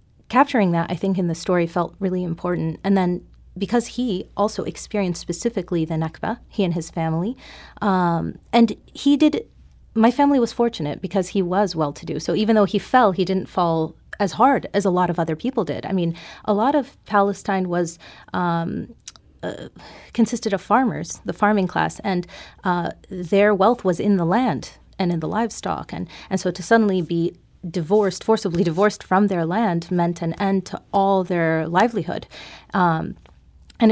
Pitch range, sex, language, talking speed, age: 170-205 Hz, female, English, 180 wpm, 30-49